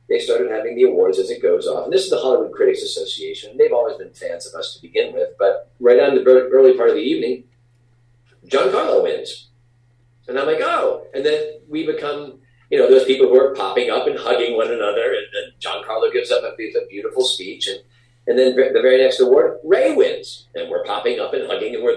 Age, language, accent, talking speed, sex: 40-59, English, American, 225 wpm, male